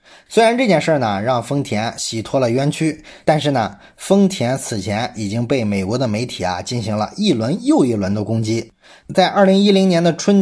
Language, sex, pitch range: Chinese, male, 115-170 Hz